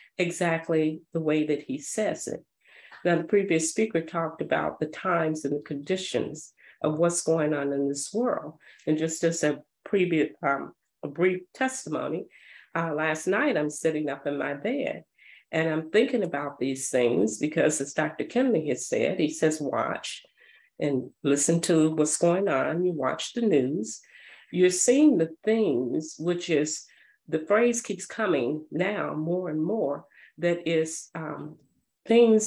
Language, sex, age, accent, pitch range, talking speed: English, female, 40-59, American, 155-205 Hz, 160 wpm